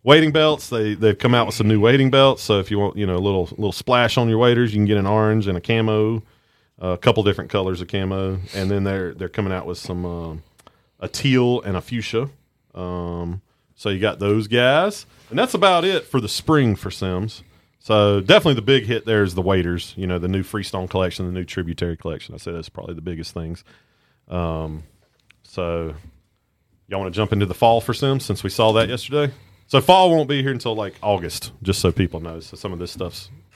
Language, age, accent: English, 30-49, American